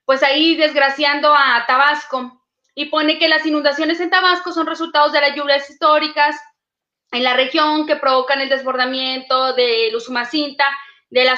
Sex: female